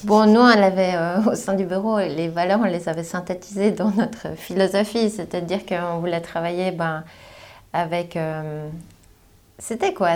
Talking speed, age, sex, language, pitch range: 160 wpm, 30-49, female, French, 165-195 Hz